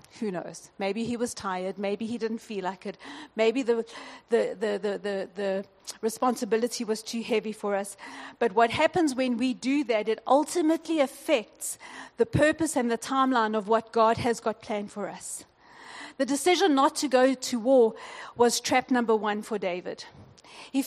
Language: English